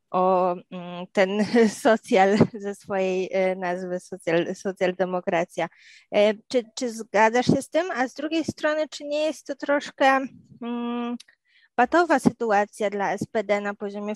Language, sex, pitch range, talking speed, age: Polish, female, 195-235 Hz, 135 wpm, 20-39